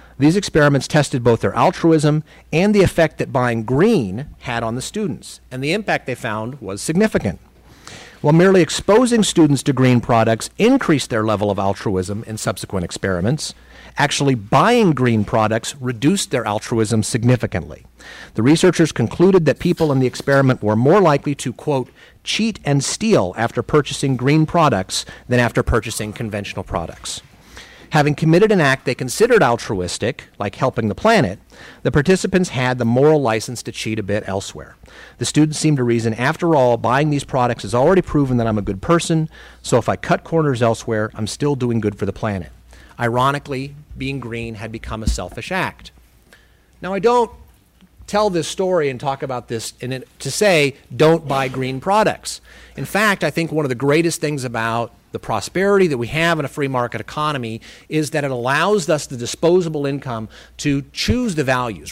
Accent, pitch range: American, 115-155 Hz